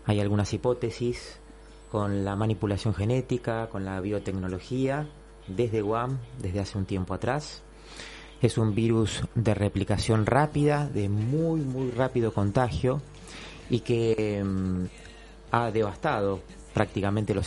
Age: 30-49